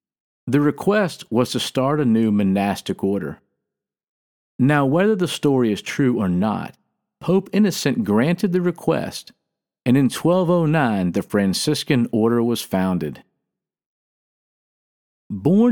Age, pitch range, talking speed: 50-69, 110-160 Hz, 120 wpm